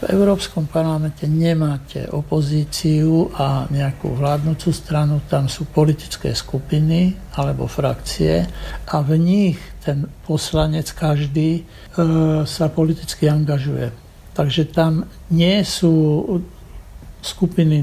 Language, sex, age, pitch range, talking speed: Slovak, male, 60-79, 145-165 Hz, 100 wpm